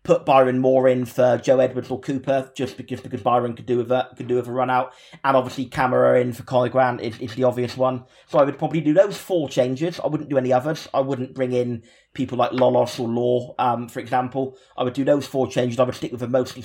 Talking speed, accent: 245 wpm, British